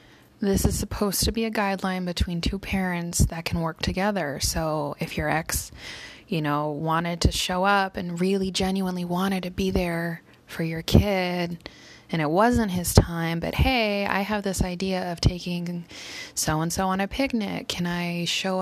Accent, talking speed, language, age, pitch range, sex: American, 175 wpm, English, 20-39, 170-195 Hz, female